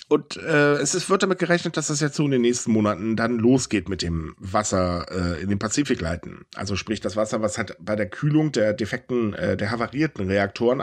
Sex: male